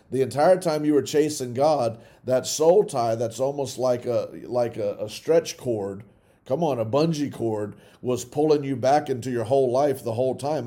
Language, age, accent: English, 40-59, American